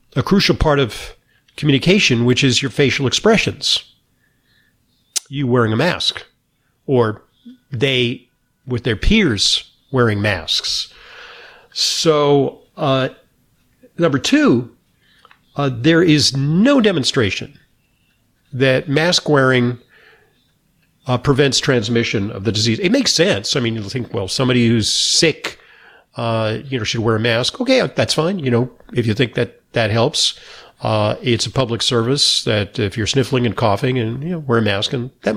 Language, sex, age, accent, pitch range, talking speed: English, male, 50-69, American, 115-145 Hz, 150 wpm